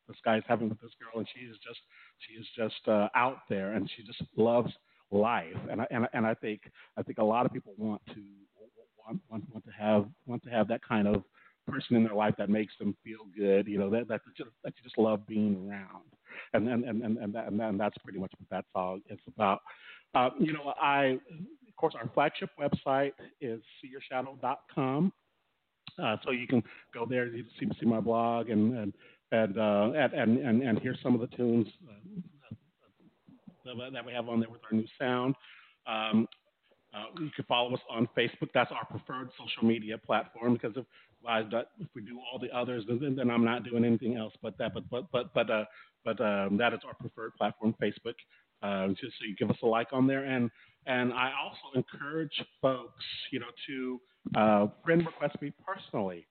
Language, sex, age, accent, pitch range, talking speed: English, male, 50-69, American, 110-130 Hz, 205 wpm